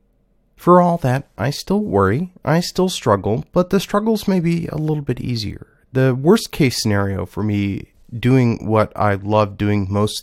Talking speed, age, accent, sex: 175 wpm, 30-49, American, male